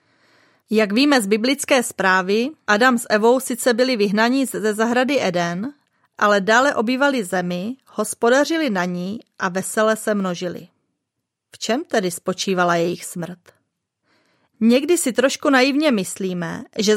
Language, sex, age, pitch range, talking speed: Czech, female, 30-49, 200-255 Hz, 130 wpm